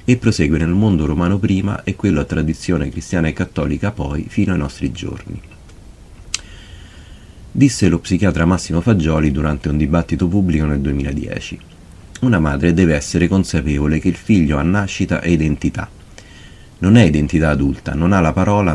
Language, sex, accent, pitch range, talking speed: Italian, male, native, 80-100 Hz, 155 wpm